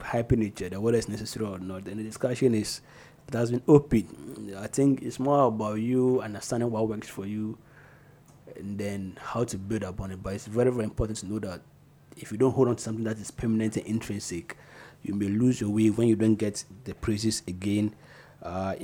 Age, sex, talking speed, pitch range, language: 30-49, male, 215 wpm, 105-125 Hz, English